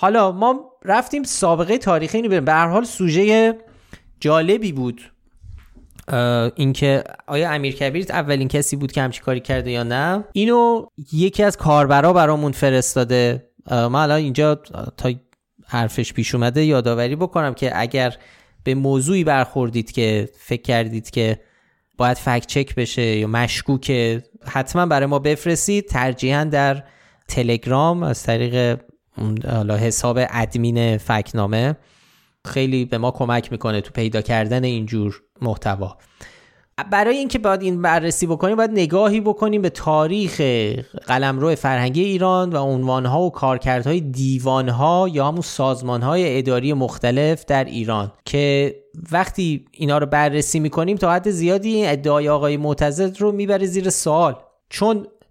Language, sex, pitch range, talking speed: Persian, male, 120-170 Hz, 130 wpm